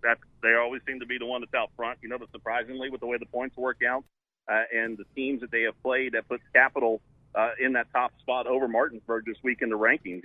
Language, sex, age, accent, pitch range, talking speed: English, male, 40-59, American, 115-135 Hz, 265 wpm